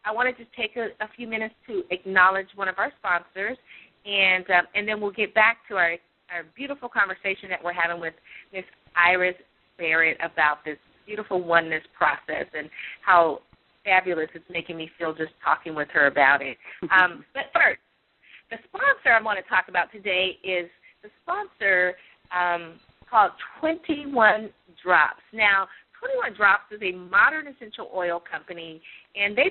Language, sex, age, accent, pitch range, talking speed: English, female, 30-49, American, 175-235 Hz, 165 wpm